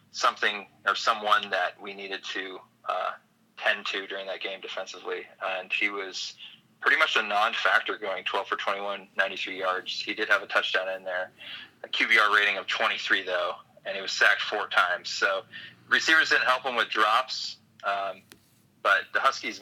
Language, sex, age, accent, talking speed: English, male, 20-39, American, 175 wpm